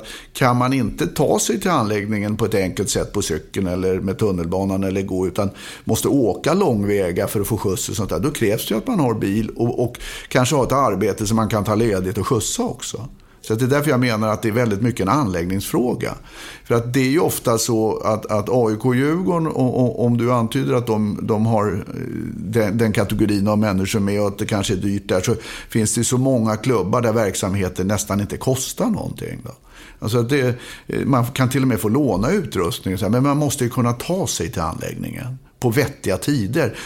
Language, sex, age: English, male, 60-79